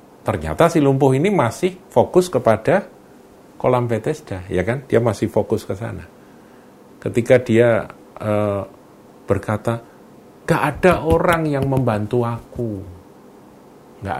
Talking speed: 115 wpm